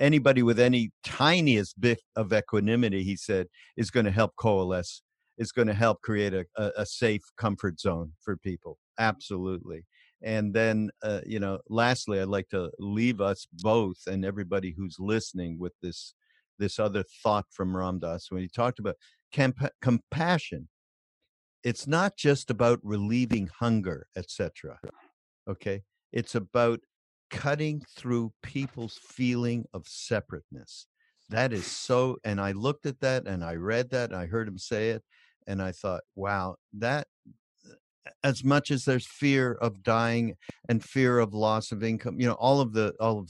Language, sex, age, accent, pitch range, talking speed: English, male, 50-69, American, 100-125 Hz, 160 wpm